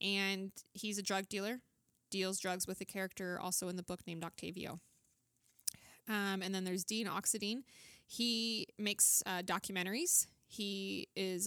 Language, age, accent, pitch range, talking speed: English, 20-39, American, 175-205 Hz, 145 wpm